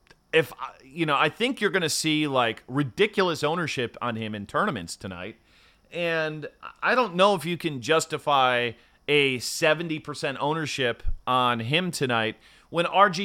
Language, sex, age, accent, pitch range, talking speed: English, male, 30-49, American, 125-175 Hz, 155 wpm